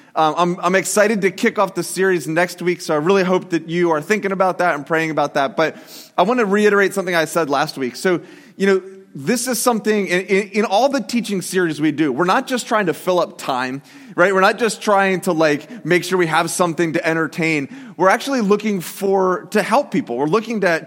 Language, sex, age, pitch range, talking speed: English, male, 30-49, 170-210 Hz, 235 wpm